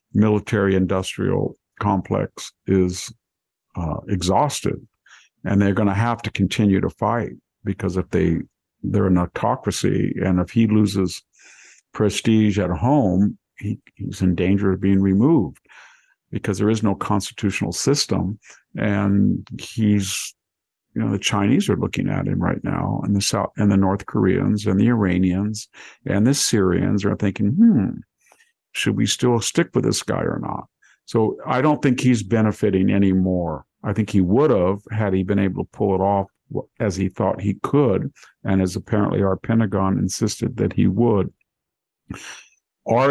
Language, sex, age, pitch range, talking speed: English, male, 50-69, 95-110 Hz, 155 wpm